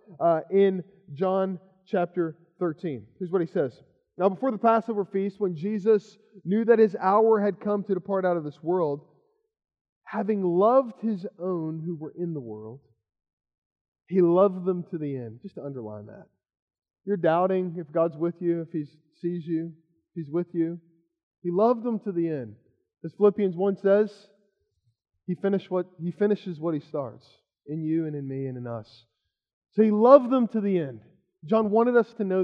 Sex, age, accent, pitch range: male, 20-39, American, 170-215 Hz